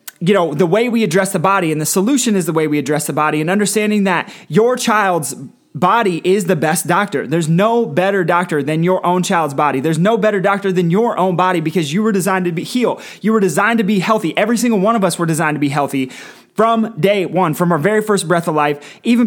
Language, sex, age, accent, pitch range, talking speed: English, male, 20-39, American, 155-205 Hz, 245 wpm